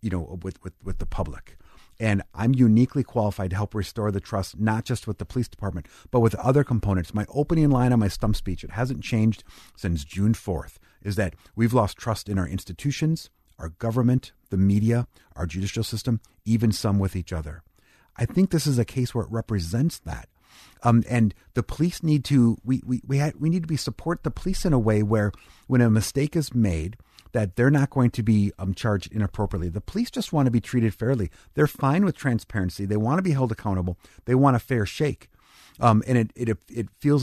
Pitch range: 100-130 Hz